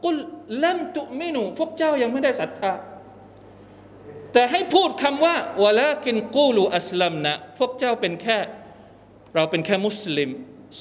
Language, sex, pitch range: Thai, male, 185-240 Hz